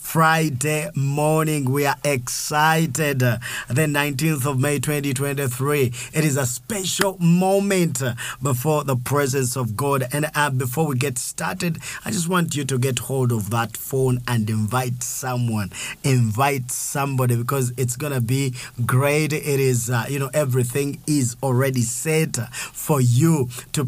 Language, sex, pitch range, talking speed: English, male, 125-150 Hz, 150 wpm